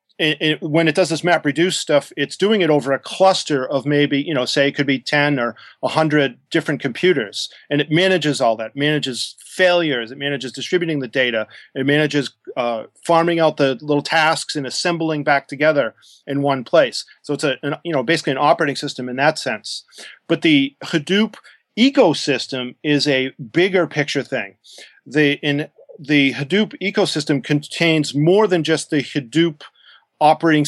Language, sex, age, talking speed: English, male, 40-59, 170 wpm